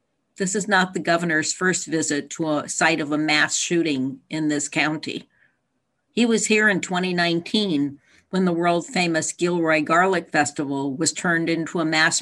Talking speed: 165 wpm